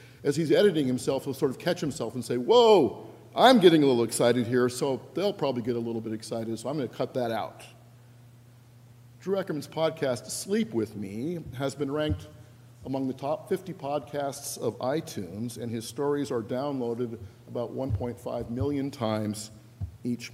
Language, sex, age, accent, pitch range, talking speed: English, male, 50-69, American, 115-150 Hz, 175 wpm